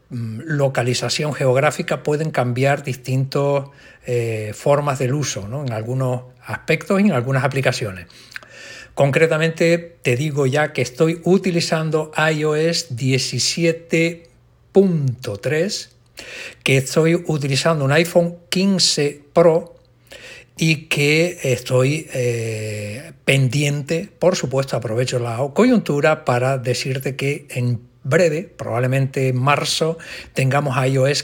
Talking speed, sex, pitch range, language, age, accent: 100 wpm, male, 125-160 Hz, Spanish, 60-79, Spanish